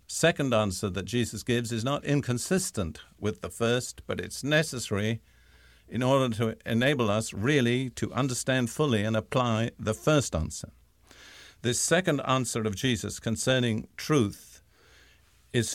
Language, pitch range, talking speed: English, 105-130 Hz, 135 wpm